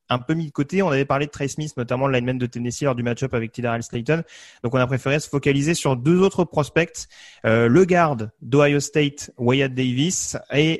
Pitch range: 125-155 Hz